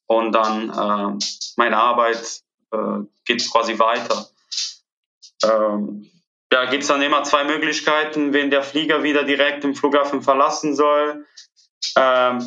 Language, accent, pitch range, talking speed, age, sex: German, German, 125-150 Hz, 130 wpm, 20-39, male